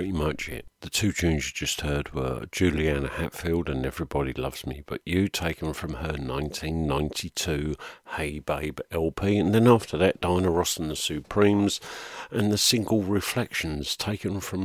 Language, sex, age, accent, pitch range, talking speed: English, male, 50-69, British, 75-90 Hz, 165 wpm